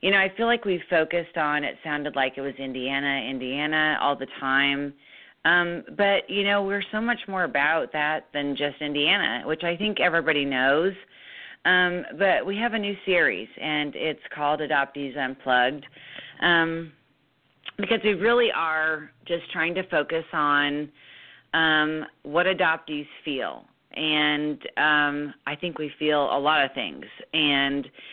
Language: English